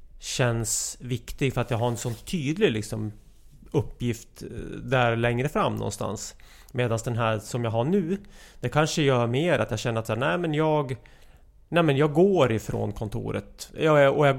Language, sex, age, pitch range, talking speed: English, male, 30-49, 110-145 Hz, 175 wpm